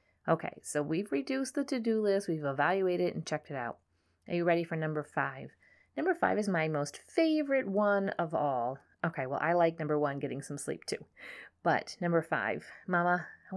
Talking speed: 195 wpm